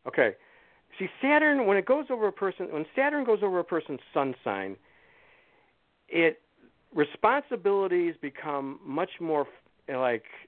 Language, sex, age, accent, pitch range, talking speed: English, male, 50-69, American, 125-185 Hz, 130 wpm